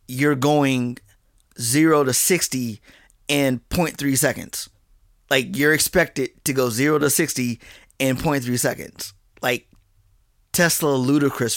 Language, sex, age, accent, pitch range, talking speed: English, male, 20-39, American, 125-155 Hz, 115 wpm